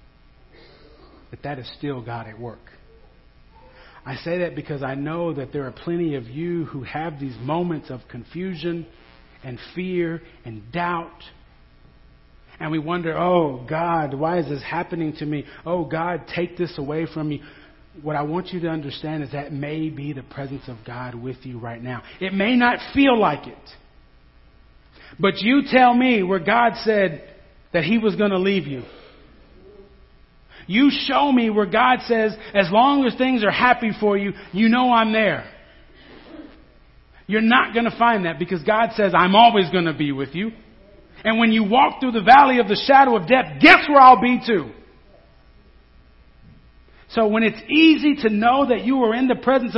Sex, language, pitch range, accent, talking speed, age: male, English, 135-230 Hz, American, 180 wpm, 40-59